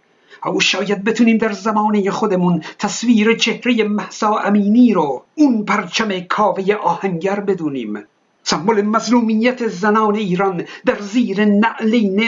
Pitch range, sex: 195-235 Hz, male